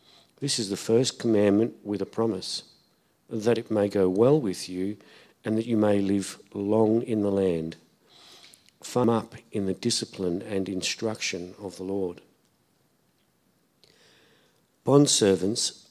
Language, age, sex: English, 50-69, male